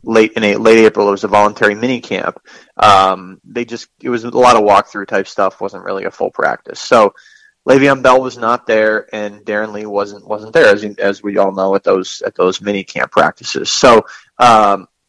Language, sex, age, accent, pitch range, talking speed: English, male, 20-39, American, 105-125 Hz, 210 wpm